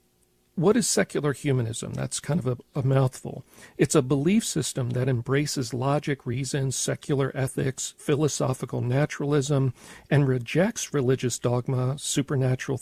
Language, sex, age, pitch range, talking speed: English, male, 50-69, 125-145 Hz, 125 wpm